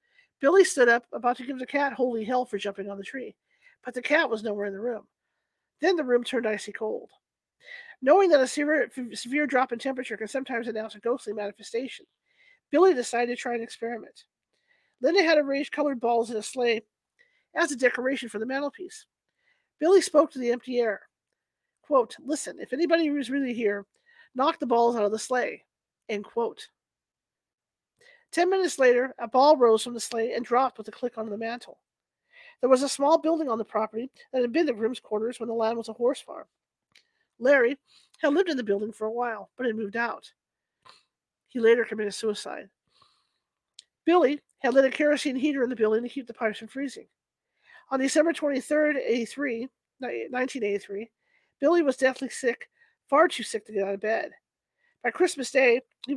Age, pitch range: 40-59, 230-300 Hz